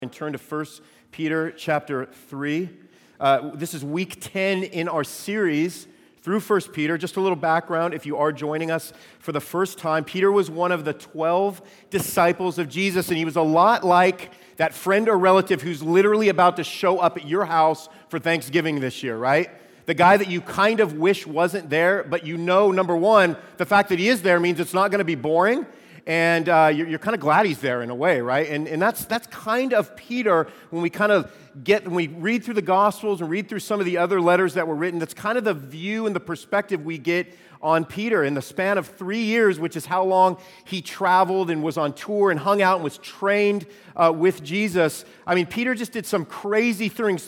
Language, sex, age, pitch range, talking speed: English, male, 40-59, 160-195 Hz, 225 wpm